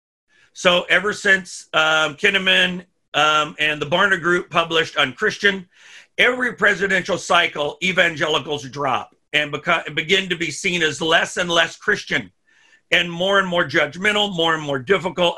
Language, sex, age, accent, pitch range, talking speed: English, male, 50-69, American, 155-195 Hz, 145 wpm